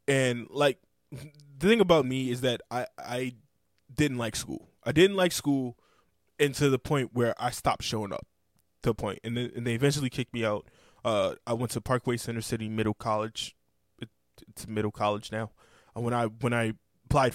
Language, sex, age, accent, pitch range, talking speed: English, male, 20-39, American, 110-135 Hz, 190 wpm